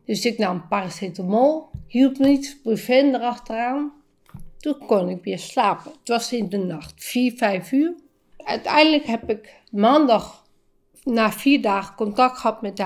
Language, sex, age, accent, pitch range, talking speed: Dutch, female, 50-69, Dutch, 215-285 Hz, 150 wpm